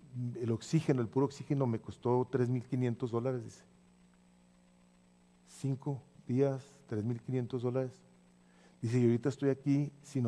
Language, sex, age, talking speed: English, male, 40-59, 130 wpm